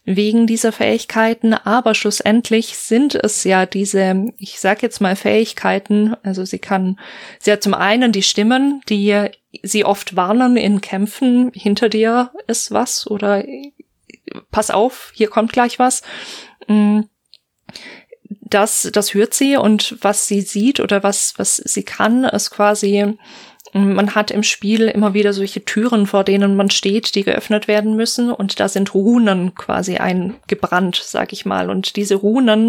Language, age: German, 20-39